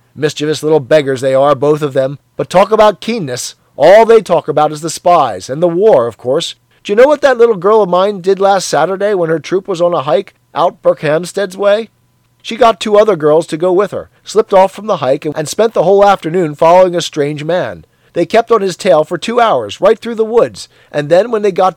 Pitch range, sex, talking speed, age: 140-205 Hz, male, 235 wpm, 40-59